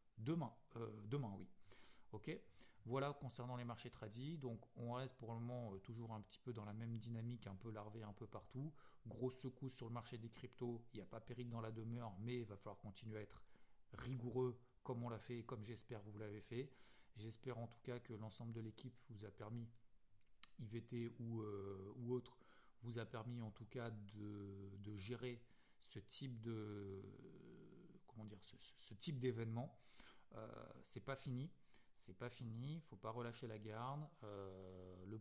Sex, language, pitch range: male, French, 105-125 Hz